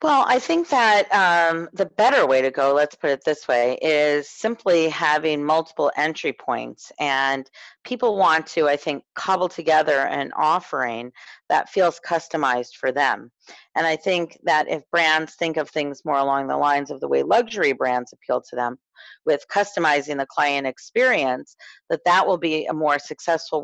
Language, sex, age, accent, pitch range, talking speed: English, female, 40-59, American, 140-165 Hz, 175 wpm